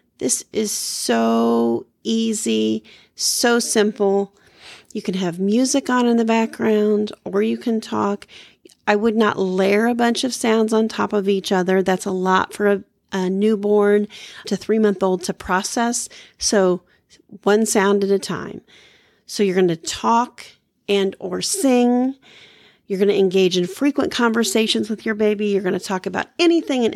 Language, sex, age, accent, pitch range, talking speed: English, female, 40-59, American, 190-235 Hz, 165 wpm